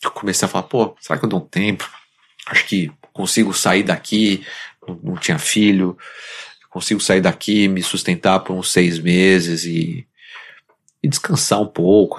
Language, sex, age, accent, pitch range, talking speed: Portuguese, male, 30-49, Brazilian, 90-105 Hz, 165 wpm